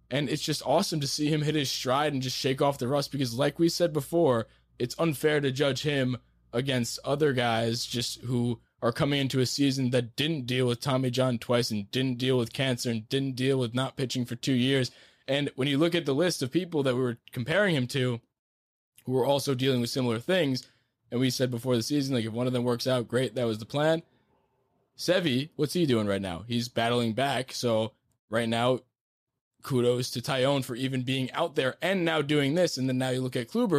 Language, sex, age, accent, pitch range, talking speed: English, male, 20-39, American, 120-145 Hz, 225 wpm